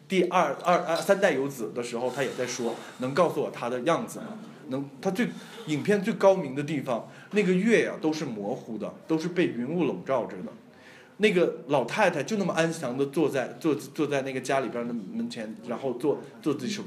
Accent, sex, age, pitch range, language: native, male, 20-39, 150-200 Hz, Chinese